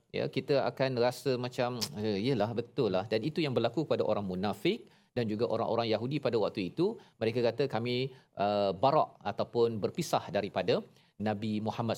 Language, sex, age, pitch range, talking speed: Malayalam, male, 40-59, 110-135 Hz, 165 wpm